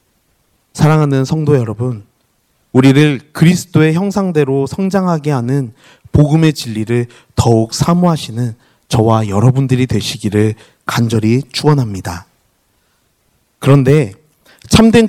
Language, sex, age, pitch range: Korean, male, 30-49, 115-170 Hz